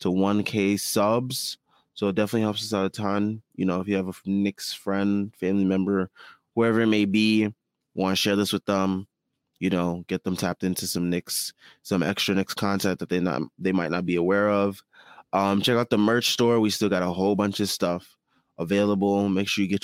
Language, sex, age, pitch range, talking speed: English, male, 20-39, 90-105 Hz, 215 wpm